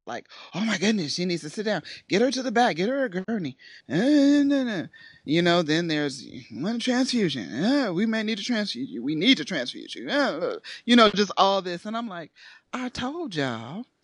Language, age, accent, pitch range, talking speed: English, 30-49, American, 150-255 Hz, 220 wpm